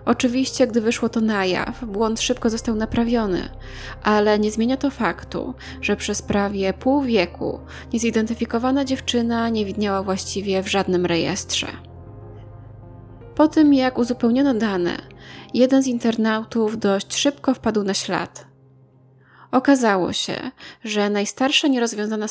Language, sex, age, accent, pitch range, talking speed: Polish, female, 20-39, native, 200-245 Hz, 125 wpm